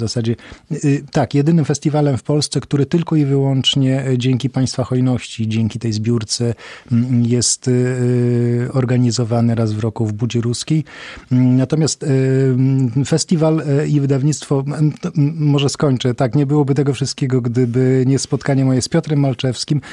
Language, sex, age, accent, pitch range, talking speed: Polish, male, 40-59, native, 120-140 Hz, 130 wpm